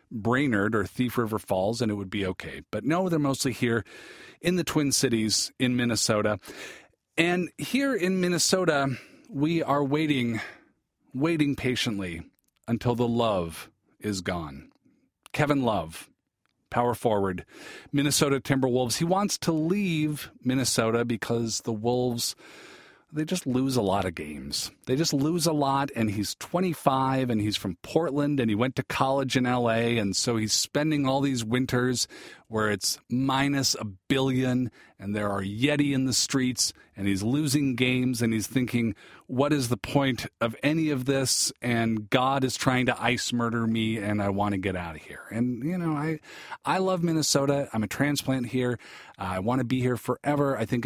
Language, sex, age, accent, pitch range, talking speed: English, male, 40-59, American, 110-145 Hz, 170 wpm